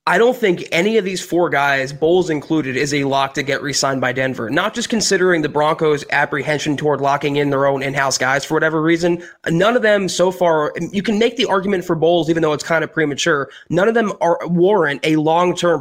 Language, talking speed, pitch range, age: English, 225 wpm, 150-180 Hz, 20-39